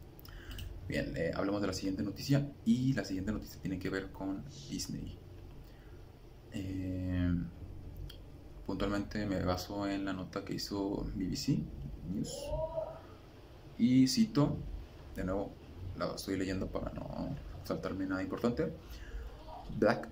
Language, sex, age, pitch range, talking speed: Spanish, male, 20-39, 90-100 Hz, 120 wpm